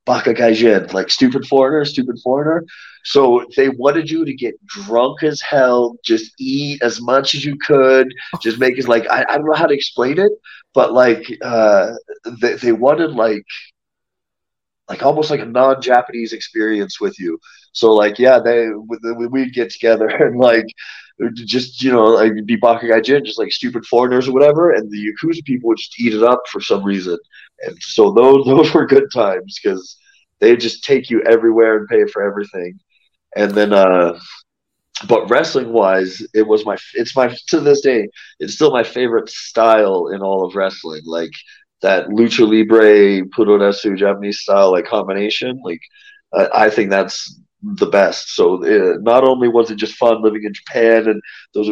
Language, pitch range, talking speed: English, 110-160 Hz, 180 wpm